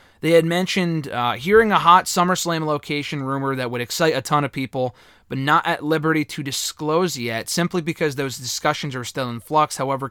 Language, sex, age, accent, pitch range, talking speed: English, male, 30-49, American, 125-165 Hz, 195 wpm